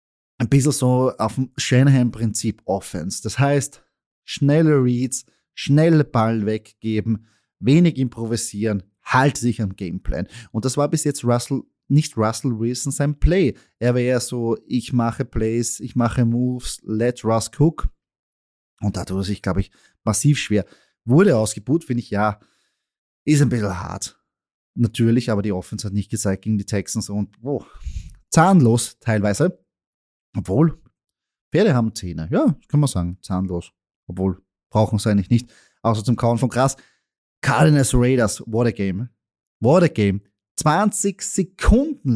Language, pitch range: German, 105-135 Hz